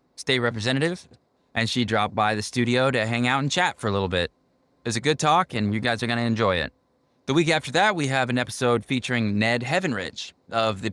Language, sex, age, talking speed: English, male, 20-39, 235 wpm